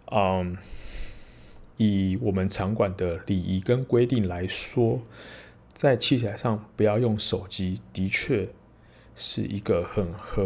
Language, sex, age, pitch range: Chinese, male, 20-39, 90-105 Hz